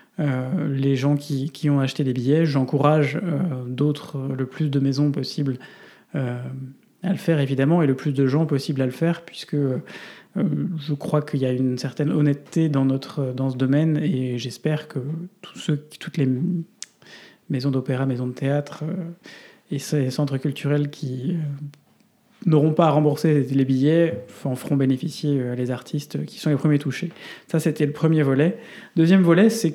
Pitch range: 135-165 Hz